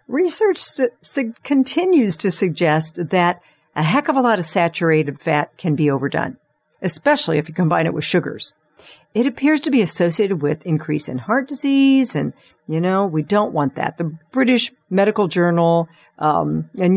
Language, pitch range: English, 155-225 Hz